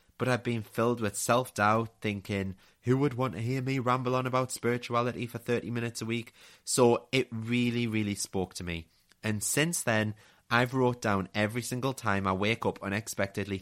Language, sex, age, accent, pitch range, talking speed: English, male, 20-39, British, 100-125 Hz, 185 wpm